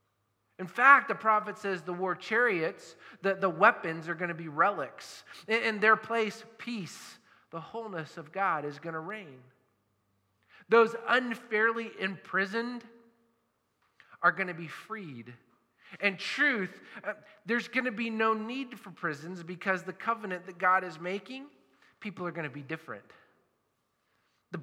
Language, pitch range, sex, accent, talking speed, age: English, 180-235 Hz, male, American, 145 wpm, 40-59